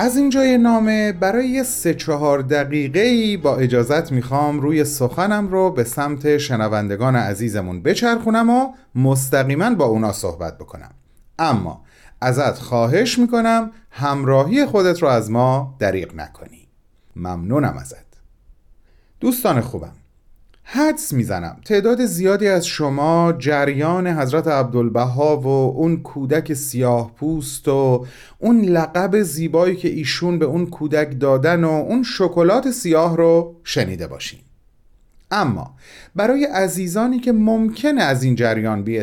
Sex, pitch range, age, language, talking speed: male, 120-195 Hz, 40-59, Persian, 120 wpm